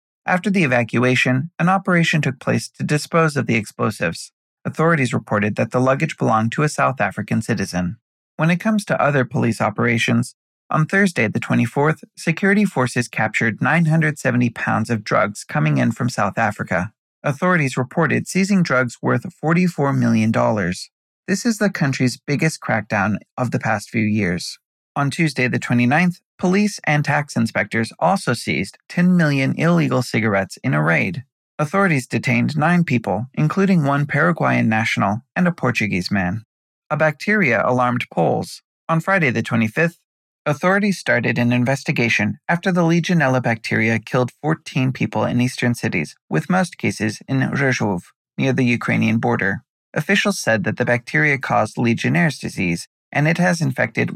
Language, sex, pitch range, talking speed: English, male, 115-160 Hz, 150 wpm